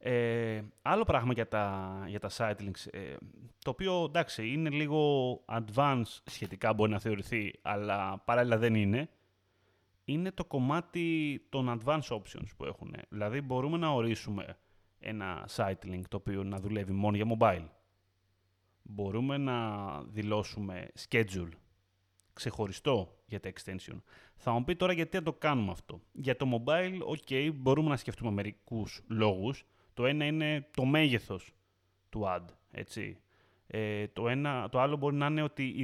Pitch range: 100-140 Hz